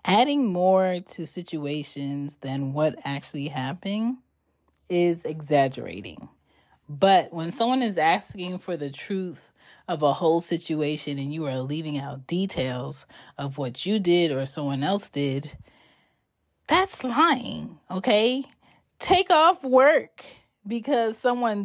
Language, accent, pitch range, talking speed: English, American, 155-220 Hz, 120 wpm